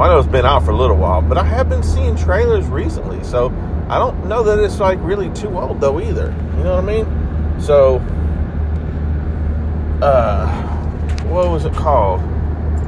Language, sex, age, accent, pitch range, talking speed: English, male, 40-59, American, 80-85 Hz, 180 wpm